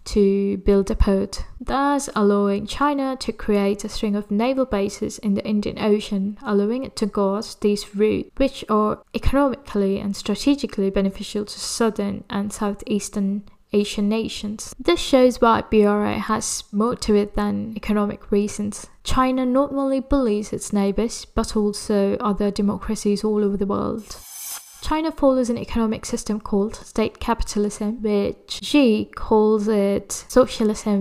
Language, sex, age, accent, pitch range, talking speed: English, female, 10-29, British, 205-230 Hz, 145 wpm